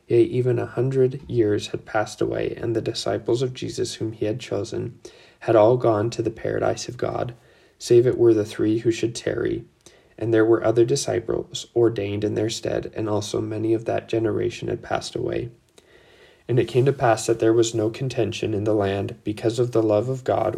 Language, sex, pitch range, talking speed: English, male, 110-125 Hz, 205 wpm